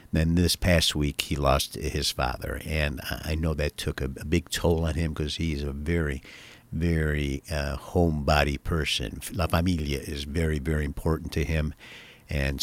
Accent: American